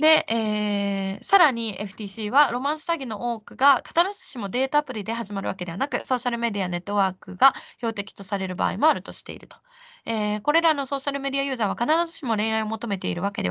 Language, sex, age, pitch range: Japanese, female, 20-39, 210-300 Hz